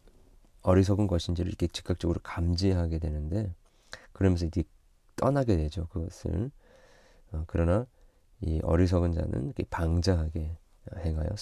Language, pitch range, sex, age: Korean, 85-105 Hz, male, 40-59